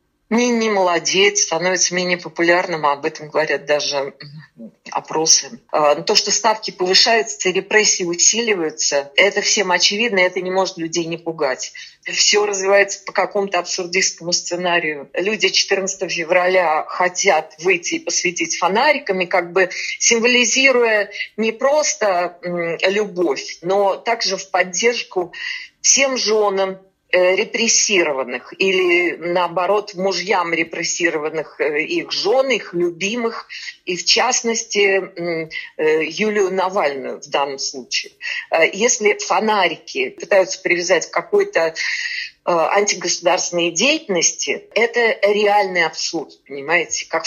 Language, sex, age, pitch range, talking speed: Russian, female, 40-59, 170-225 Hz, 105 wpm